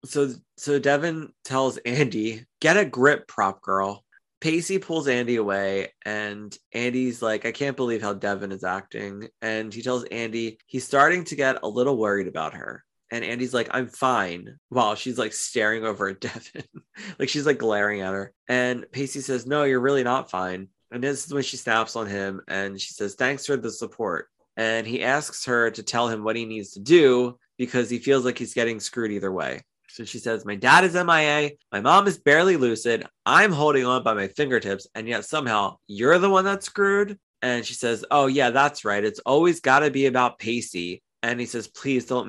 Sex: male